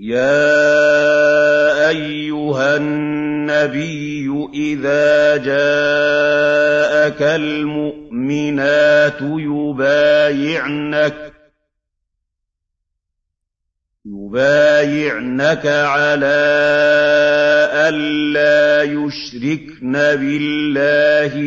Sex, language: male, Arabic